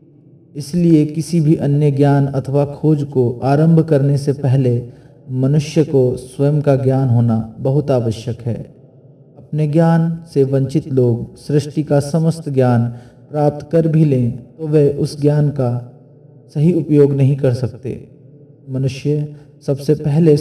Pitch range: 130-150 Hz